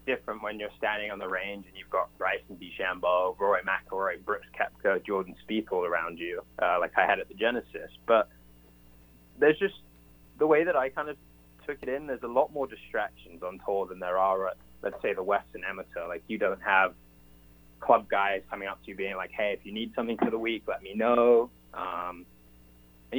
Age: 20-39